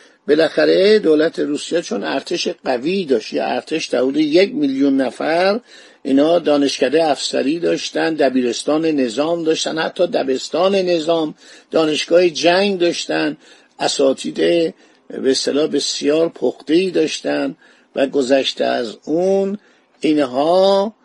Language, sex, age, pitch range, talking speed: Persian, male, 50-69, 140-180 Hz, 110 wpm